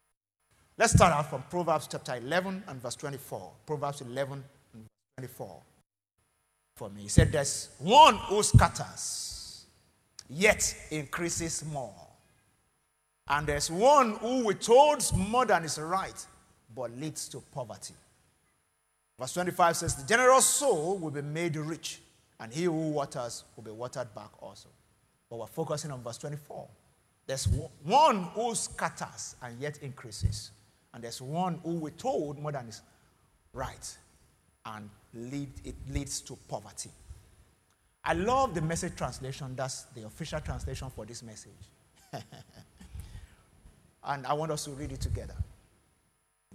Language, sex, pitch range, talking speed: English, male, 105-165 Hz, 135 wpm